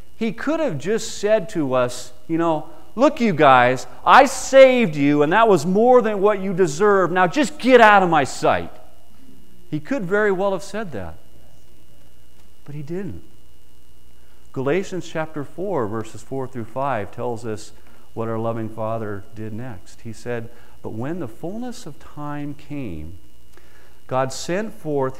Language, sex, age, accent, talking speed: English, male, 50-69, American, 160 wpm